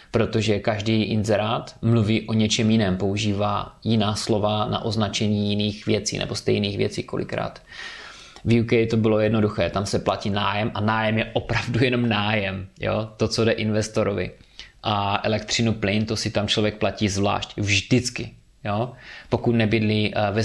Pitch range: 100-115 Hz